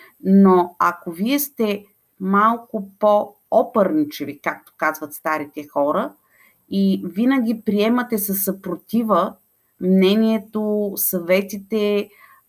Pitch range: 170-215 Hz